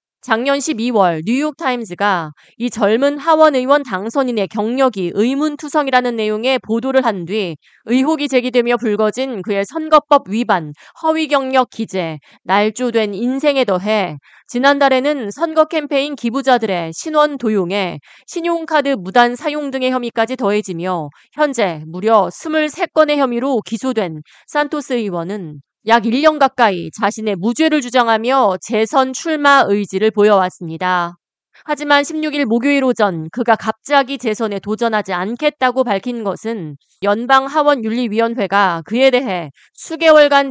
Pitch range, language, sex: 205-275 Hz, Korean, female